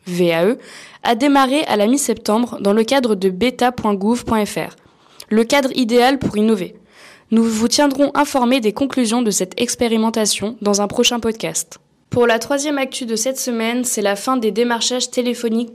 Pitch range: 215-255 Hz